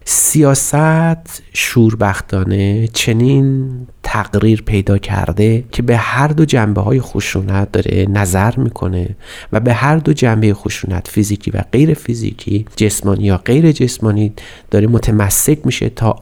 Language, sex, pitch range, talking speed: Persian, male, 100-125 Hz, 125 wpm